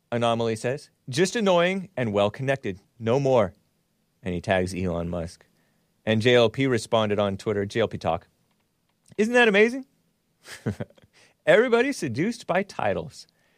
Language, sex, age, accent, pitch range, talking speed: English, male, 30-49, American, 95-160 Hz, 120 wpm